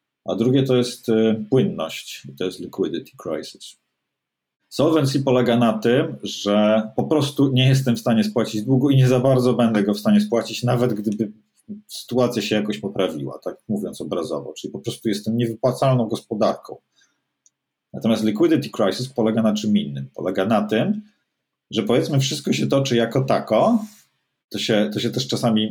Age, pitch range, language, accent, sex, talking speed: 40-59, 105-135 Hz, Polish, native, male, 160 wpm